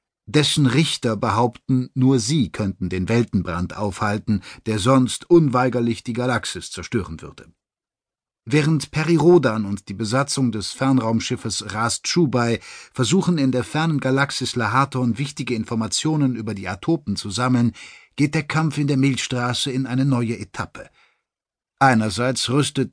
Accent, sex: German, male